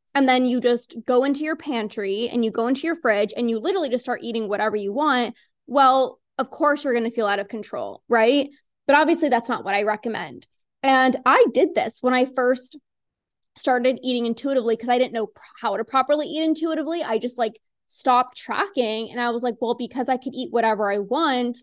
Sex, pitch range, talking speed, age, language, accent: female, 230-275 Hz, 215 wpm, 20-39, English, American